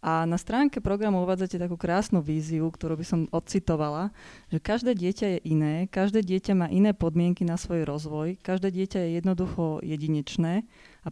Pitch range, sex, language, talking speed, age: 160-185 Hz, female, Slovak, 165 wpm, 30-49